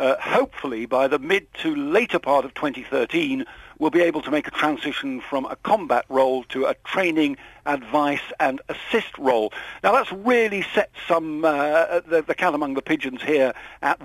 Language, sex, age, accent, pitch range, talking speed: English, male, 50-69, British, 145-200 Hz, 180 wpm